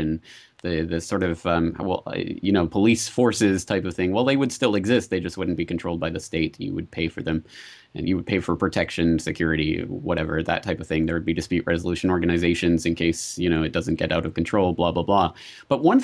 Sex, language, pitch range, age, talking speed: male, English, 85-110 Hz, 30-49, 245 wpm